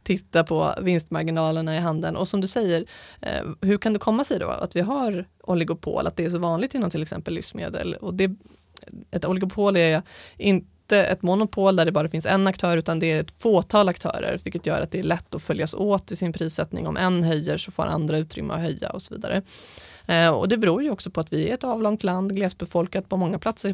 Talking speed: 220 wpm